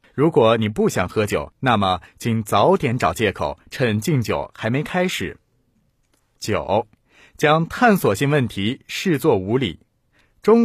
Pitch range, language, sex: 105-160 Hz, Chinese, male